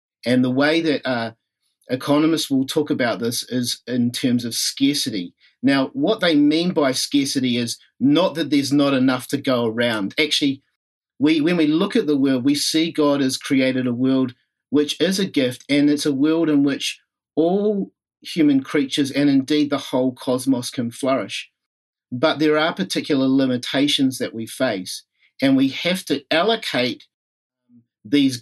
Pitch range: 125-150 Hz